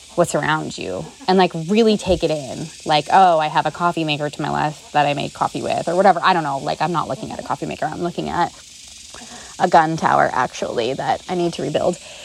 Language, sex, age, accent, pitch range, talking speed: English, female, 20-39, American, 155-195 Hz, 240 wpm